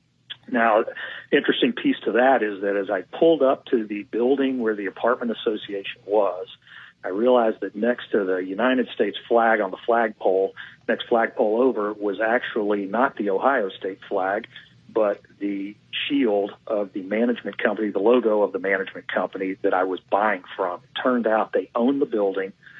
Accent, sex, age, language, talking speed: American, male, 40-59, English, 170 wpm